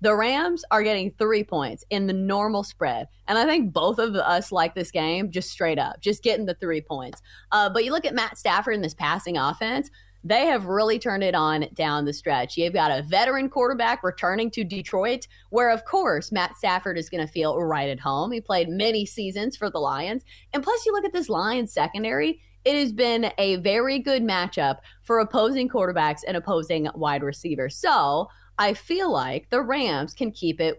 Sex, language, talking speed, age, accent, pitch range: female, English, 205 wpm, 20-39, American, 165-245 Hz